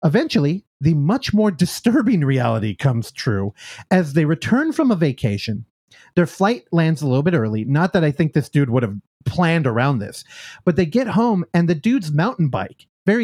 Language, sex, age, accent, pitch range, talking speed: English, male, 30-49, American, 135-210 Hz, 190 wpm